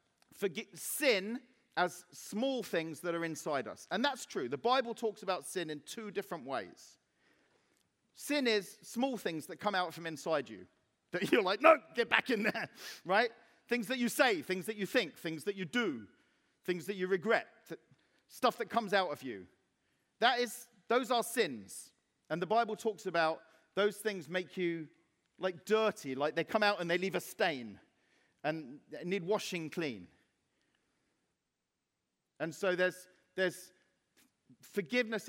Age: 40-59